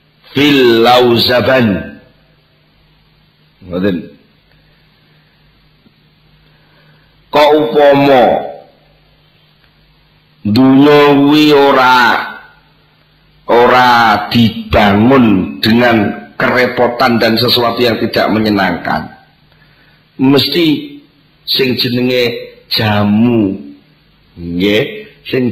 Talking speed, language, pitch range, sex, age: 45 wpm, Indonesian, 110-135 Hz, male, 50-69